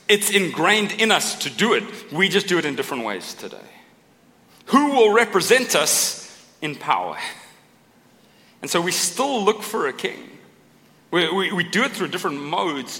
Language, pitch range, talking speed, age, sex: English, 165-205 Hz, 170 wpm, 40-59, male